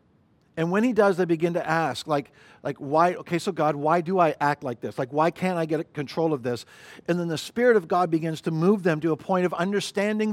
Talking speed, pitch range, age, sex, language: 250 wpm, 160-195 Hz, 50-69, male, English